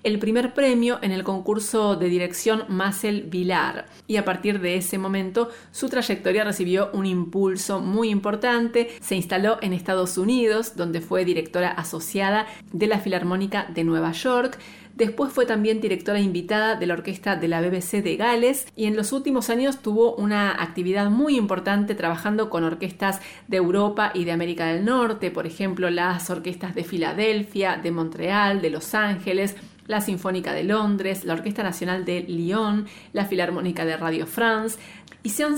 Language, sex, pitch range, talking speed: Spanish, female, 180-225 Hz, 165 wpm